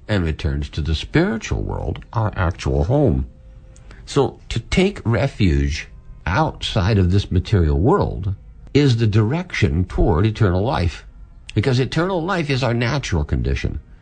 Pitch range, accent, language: 80-110 Hz, American, English